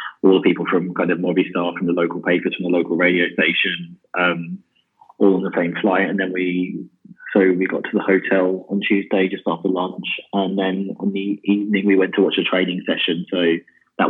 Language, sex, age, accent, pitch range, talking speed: English, male, 20-39, British, 85-95 Hz, 215 wpm